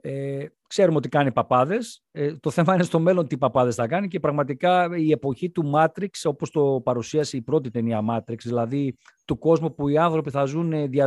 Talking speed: 195 wpm